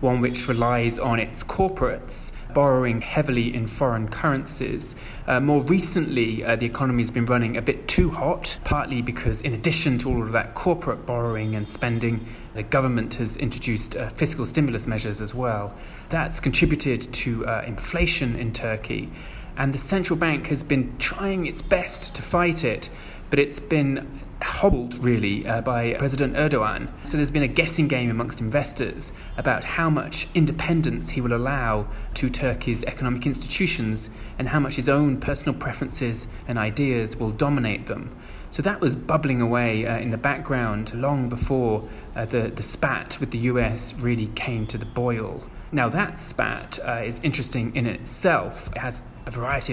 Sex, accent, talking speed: male, British, 170 wpm